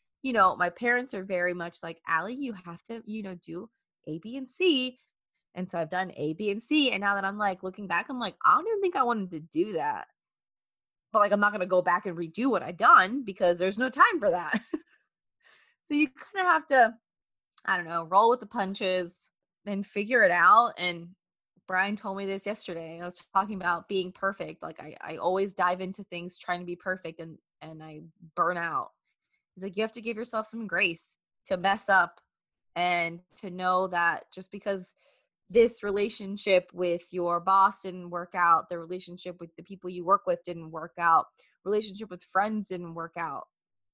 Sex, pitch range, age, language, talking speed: female, 175-235 Hz, 20-39, English, 210 wpm